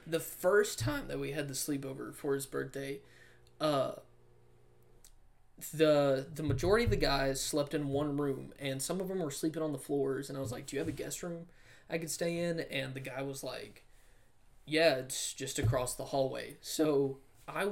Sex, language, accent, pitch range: male, English, American, 135-155 Hz